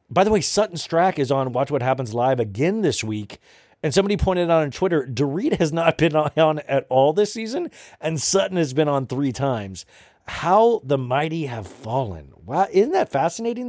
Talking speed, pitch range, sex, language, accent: 195 wpm, 125-175 Hz, male, English, American